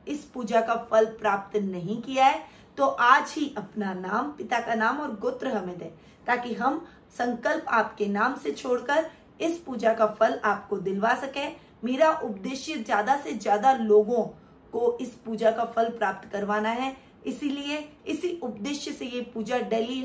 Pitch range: 215-265 Hz